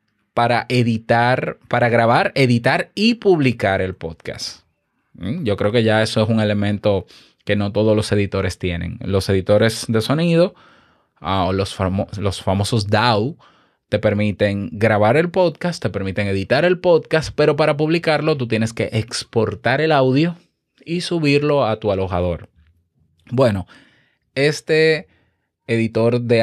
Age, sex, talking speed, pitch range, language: 20-39, male, 140 wpm, 105-150 Hz, Spanish